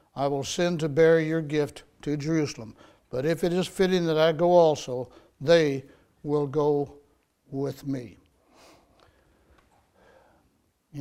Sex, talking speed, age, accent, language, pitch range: male, 130 wpm, 60-79, American, English, 140-165 Hz